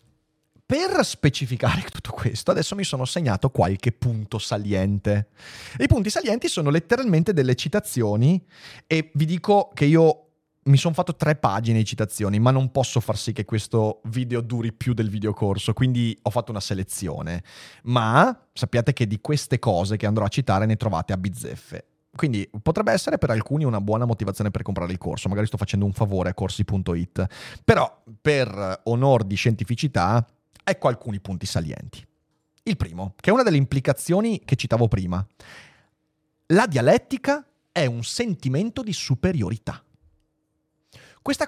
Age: 30-49